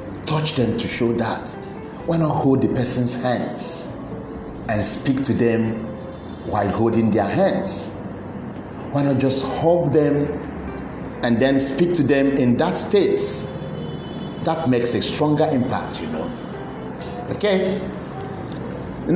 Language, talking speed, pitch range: English, 130 wpm, 105-140 Hz